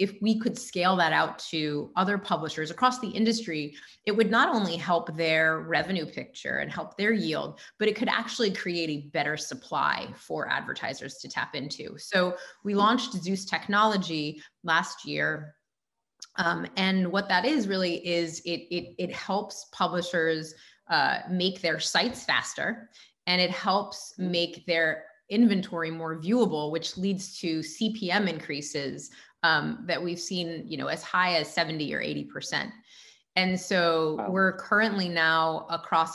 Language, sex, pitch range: English, female, 160-200 Hz